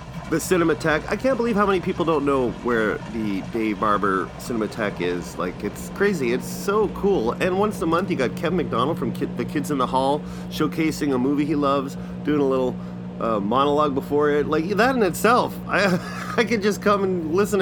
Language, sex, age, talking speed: English, male, 30-49, 205 wpm